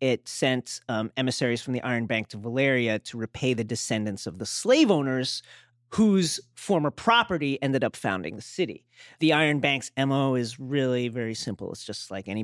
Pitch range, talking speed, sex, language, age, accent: 120-165 Hz, 185 wpm, male, English, 30-49, American